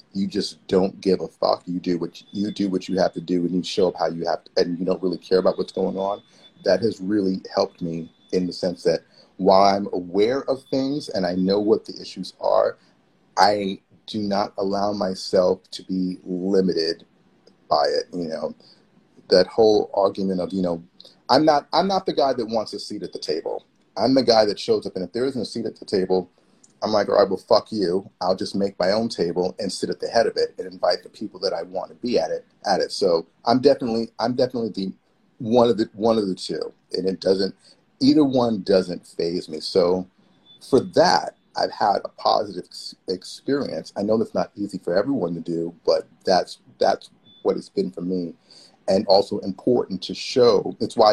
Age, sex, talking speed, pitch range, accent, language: 30-49, male, 220 wpm, 90-115 Hz, American, English